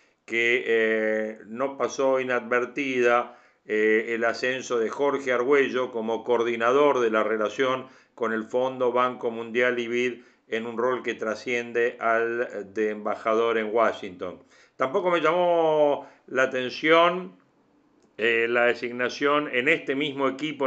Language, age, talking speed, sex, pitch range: Spanish, 50-69, 130 wpm, male, 115-140 Hz